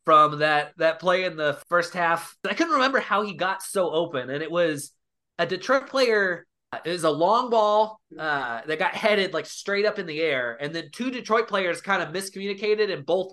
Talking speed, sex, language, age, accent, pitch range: 210 wpm, male, English, 20-39, American, 155-205 Hz